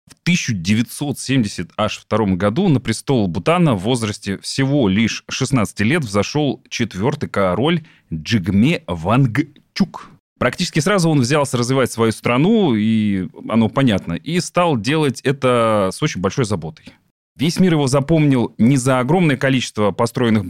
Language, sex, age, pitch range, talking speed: Russian, male, 30-49, 105-145 Hz, 130 wpm